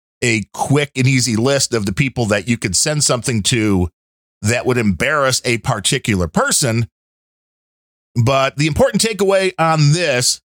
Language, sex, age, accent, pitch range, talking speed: English, male, 40-59, American, 115-155 Hz, 150 wpm